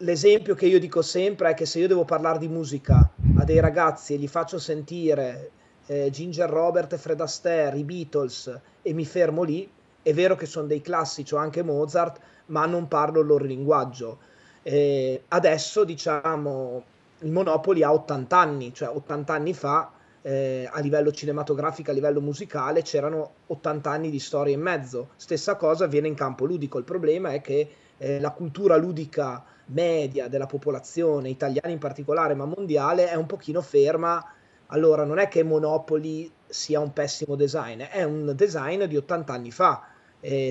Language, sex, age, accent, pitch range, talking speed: Italian, male, 30-49, native, 145-170 Hz, 170 wpm